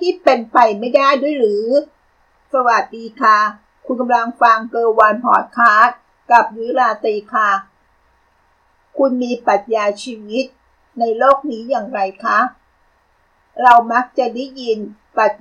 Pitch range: 215-265 Hz